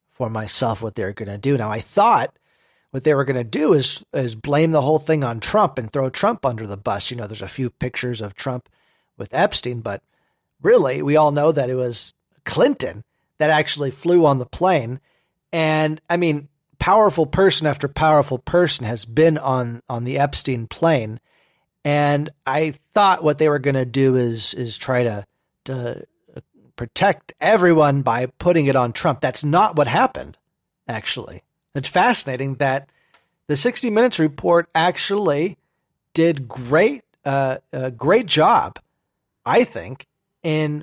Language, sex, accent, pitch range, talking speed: English, male, American, 125-160 Hz, 165 wpm